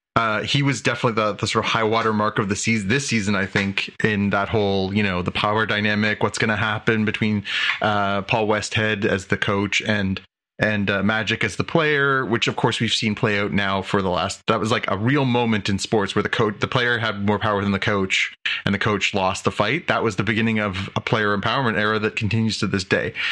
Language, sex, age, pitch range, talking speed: English, male, 30-49, 105-140 Hz, 240 wpm